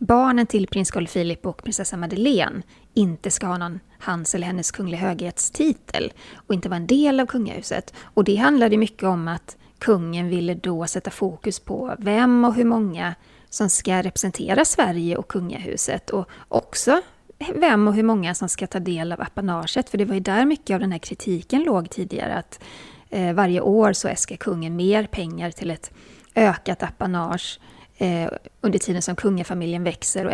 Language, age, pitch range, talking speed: Swedish, 30-49, 180-215 Hz, 175 wpm